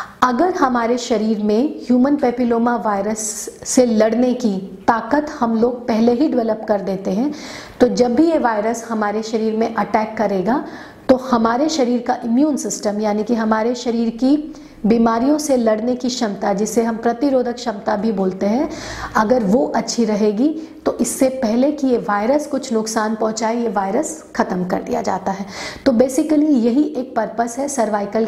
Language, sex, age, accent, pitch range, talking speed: Hindi, female, 40-59, native, 220-275 Hz, 170 wpm